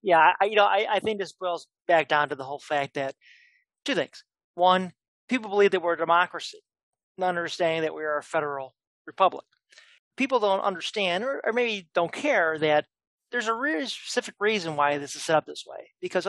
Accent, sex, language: American, male, English